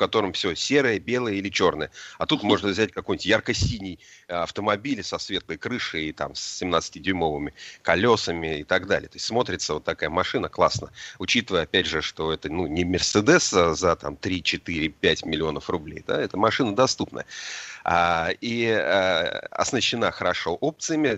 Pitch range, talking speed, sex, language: 90-115 Hz, 155 wpm, male, Russian